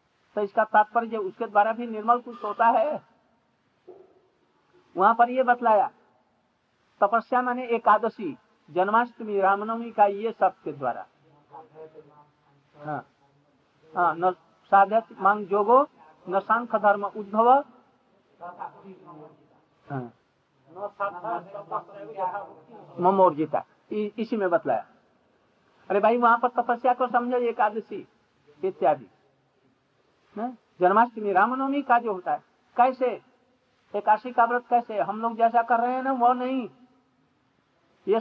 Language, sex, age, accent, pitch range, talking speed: Hindi, male, 60-79, native, 175-240 Hz, 95 wpm